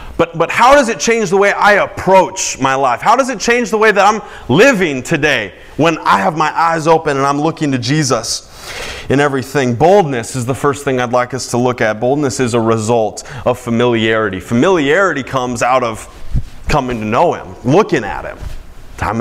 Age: 30-49